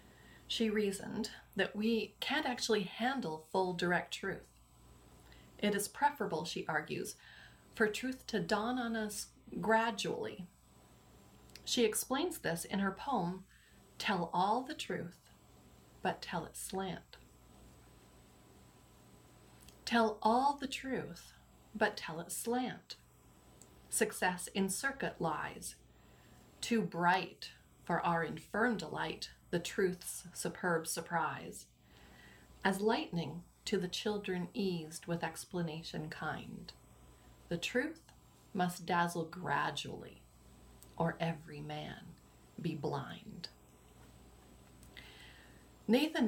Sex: female